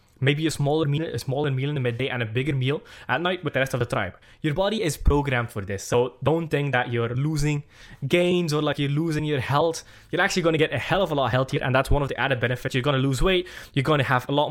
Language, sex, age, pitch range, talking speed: English, male, 10-29, 125-155 Hz, 290 wpm